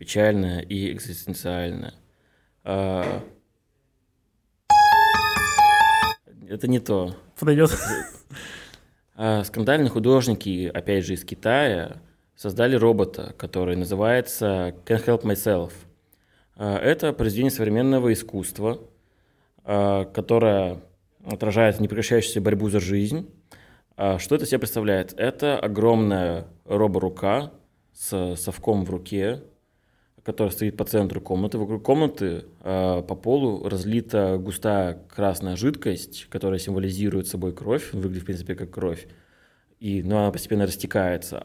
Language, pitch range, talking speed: Russian, 95-110 Hz, 95 wpm